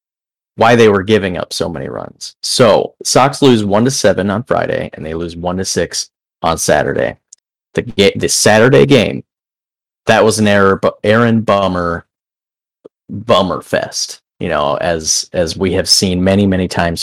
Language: English